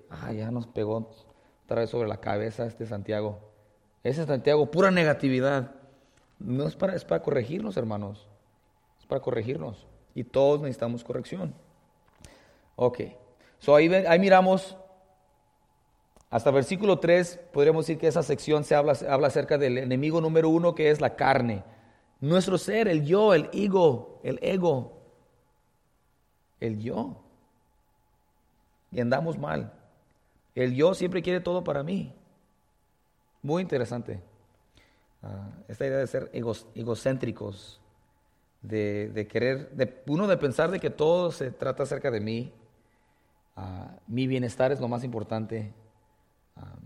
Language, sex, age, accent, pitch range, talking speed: English, male, 30-49, Mexican, 110-150 Hz, 135 wpm